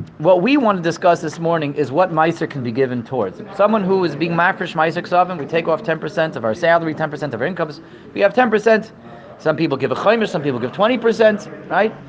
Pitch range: 135-185 Hz